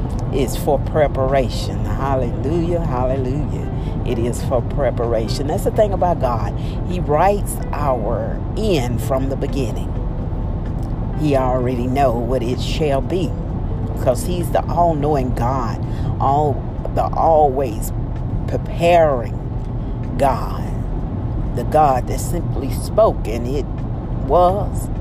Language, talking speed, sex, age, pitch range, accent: English, 110 wpm, female, 50-69, 115-135 Hz, American